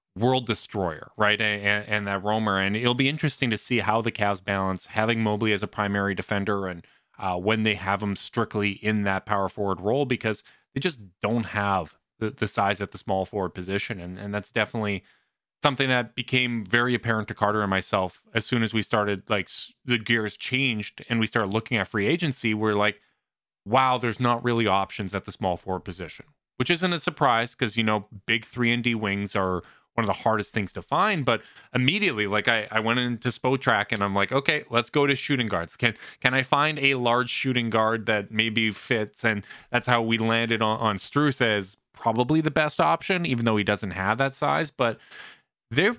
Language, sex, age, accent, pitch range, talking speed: English, male, 30-49, American, 100-125 Hz, 210 wpm